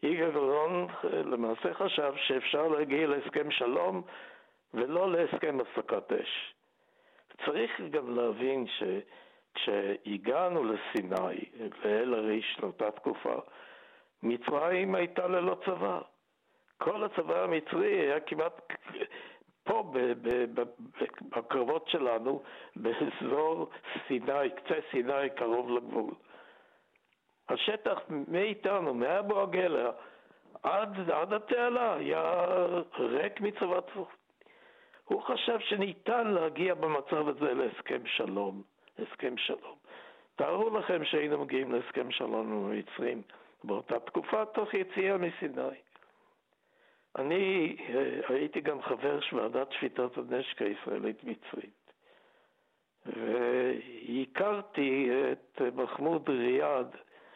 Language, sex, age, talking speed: Hebrew, male, 60-79, 95 wpm